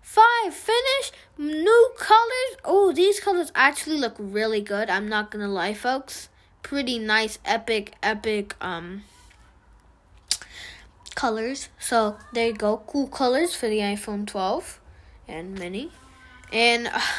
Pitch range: 210-265 Hz